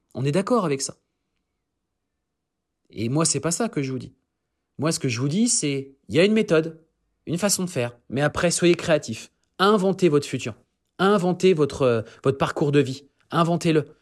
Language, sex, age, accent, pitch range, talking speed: French, male, 30-49, French, 120-160 Hz, 195 wpm